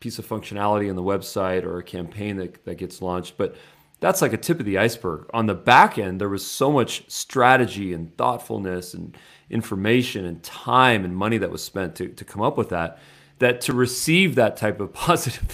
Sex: male